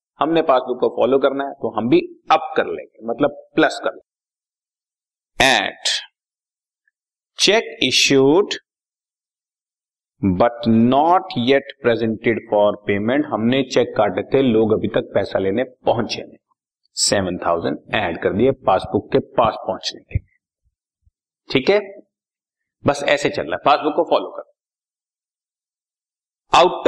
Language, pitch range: Hindi, 135-175 Hz